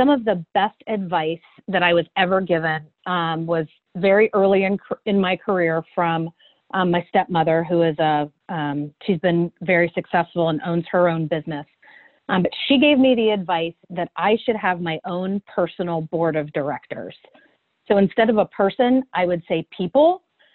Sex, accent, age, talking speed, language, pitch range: female, American, 40-59, 180 wpm, English, 170-195 Hz